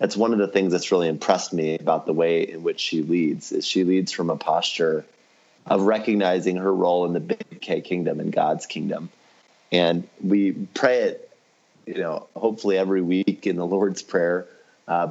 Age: 30-49